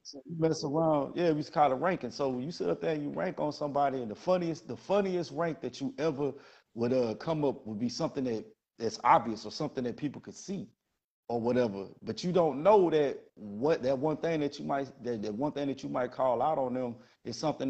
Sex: male